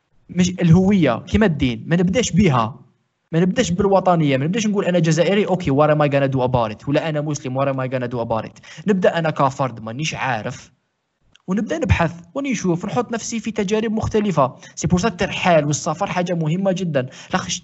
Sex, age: male, 20-39